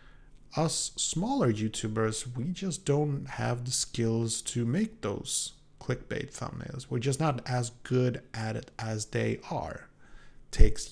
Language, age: English, 30-49